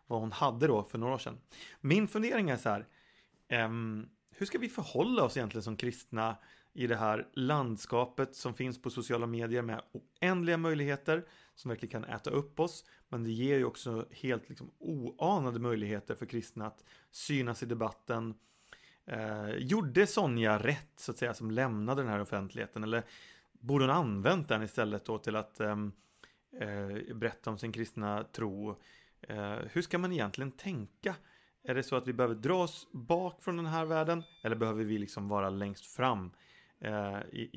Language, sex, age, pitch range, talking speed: Swedish, male, 30-49, 105-135 Hz, 170 wpm